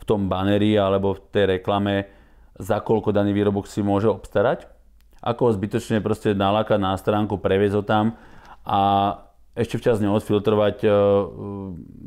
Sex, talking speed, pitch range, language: male, 145 wpm, 100-120 Hz, Slovak